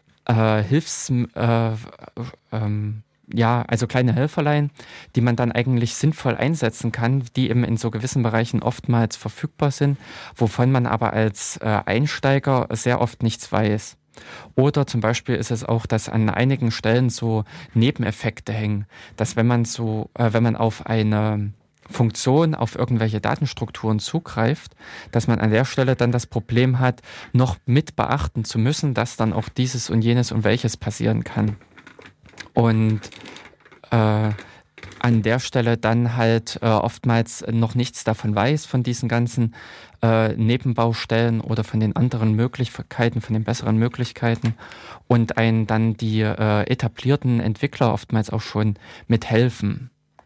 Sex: male